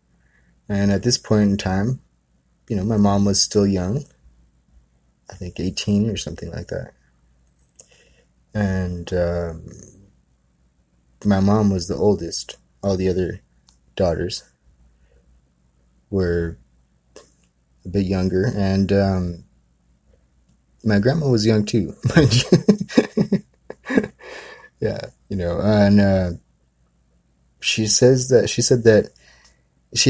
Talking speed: 110 wpm